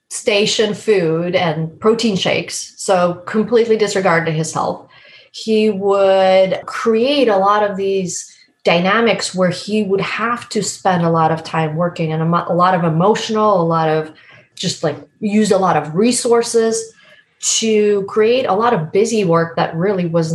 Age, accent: 30-49, American